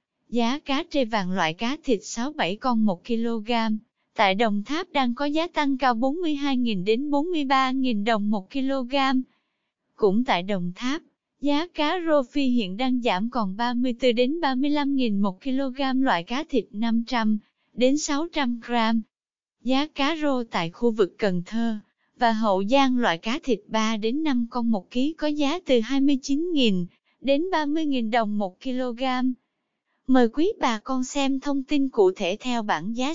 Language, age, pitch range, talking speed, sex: Vietnamese, 20-39, 230-285 Hz, 165 wpm, female